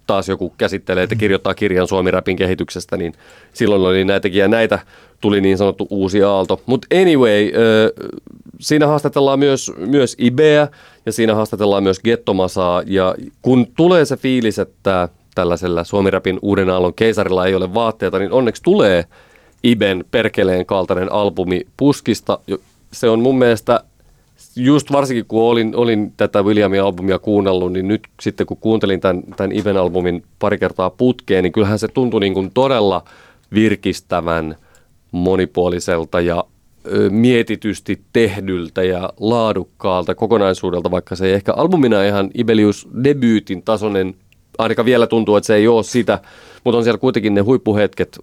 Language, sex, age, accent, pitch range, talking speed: Finnish, male, 30-49, native, 95-115 Hz, 140 wpm